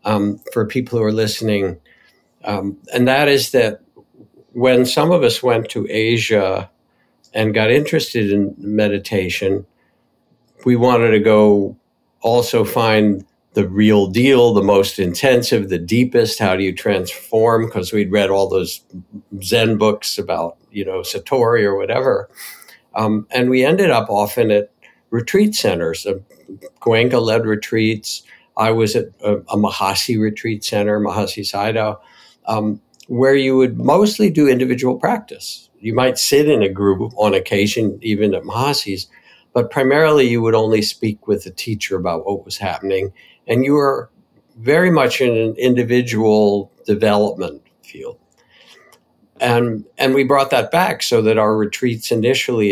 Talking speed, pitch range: 145 wpm, 100-125 Hz